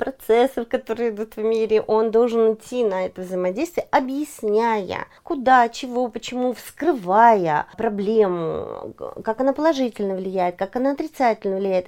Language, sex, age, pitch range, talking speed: Russian, female, 30-49, 185-245 Hz, 125 wpm